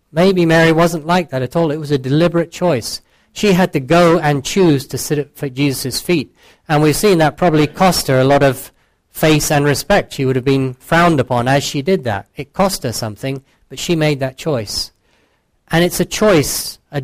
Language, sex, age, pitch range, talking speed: English, male, 40-59, 125-155 Hz, 210 wpm